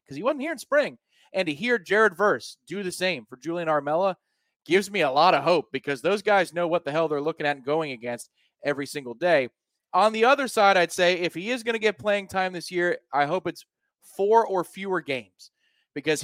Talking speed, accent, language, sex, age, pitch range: 235 wpm, American, English, male, 30-49, 145-195 Hz